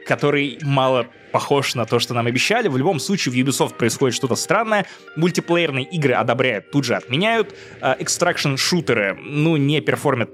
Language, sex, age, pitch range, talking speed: Russian, male, 20-39, 120-155 Hz, 150 wpm